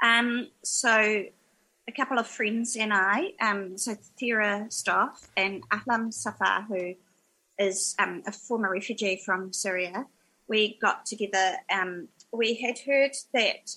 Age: 30-49